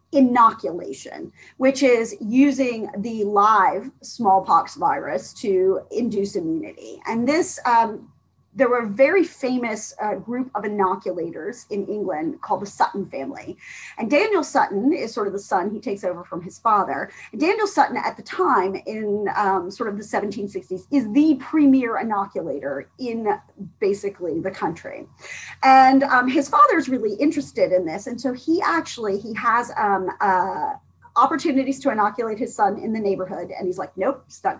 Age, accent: 40-59, American